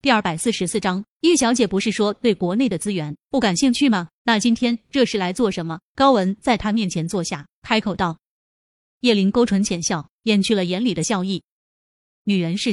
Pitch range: 190-240 Hz